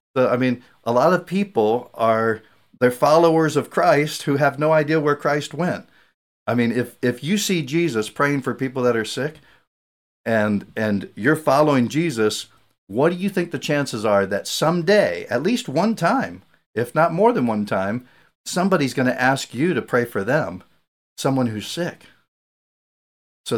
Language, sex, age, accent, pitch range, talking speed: English, male, 50-69, American, 115-160 Hz, 175 wpm